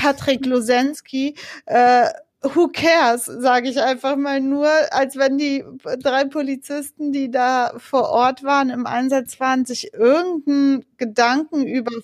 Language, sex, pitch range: German, female, 205-260 Hz